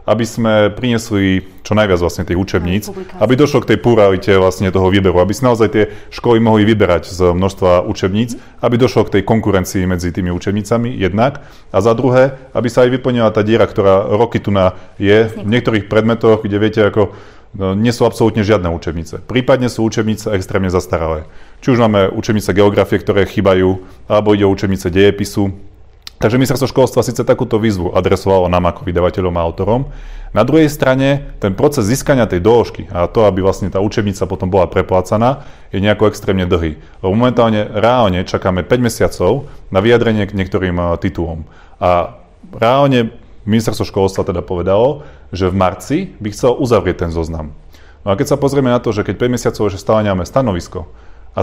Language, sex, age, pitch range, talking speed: Slovak, male, 30-49, 95-115 Hz, 175 wpm